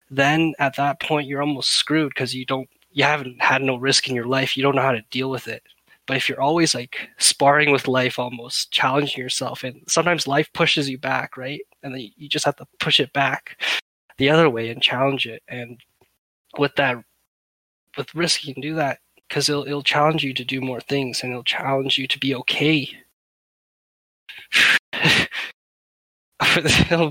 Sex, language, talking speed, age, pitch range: male, English, 190 wpm, 20-39, 125-145 Hz